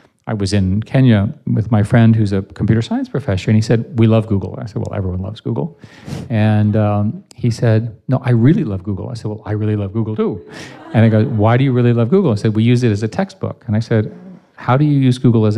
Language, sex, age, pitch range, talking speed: English, male, 40-59, 105-125 Hz, 260 wpm